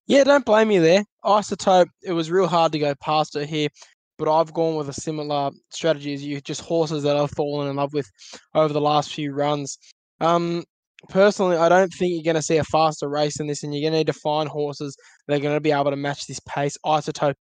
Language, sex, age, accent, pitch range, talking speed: English, male, 10-29, Australian, 140-160 Hz, 240 wpm